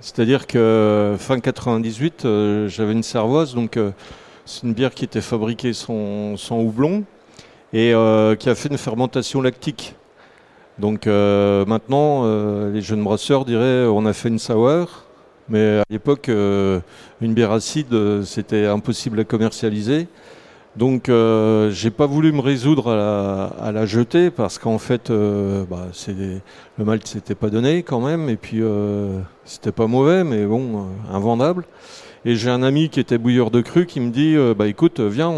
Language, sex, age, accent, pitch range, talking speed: French, male, 40-59, French, 110-135 Hz, 165 wpm